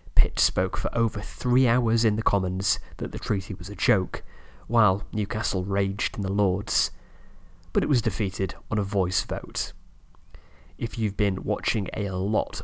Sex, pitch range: male, 95-120 Hz